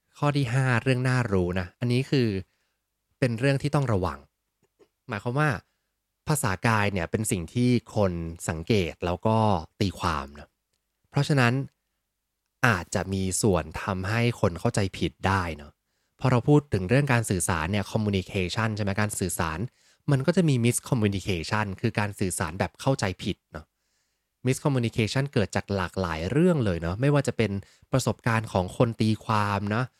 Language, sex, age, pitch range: English, male, 20-39, 95-120 Hz